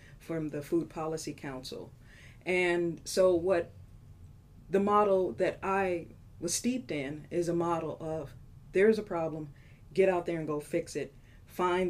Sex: female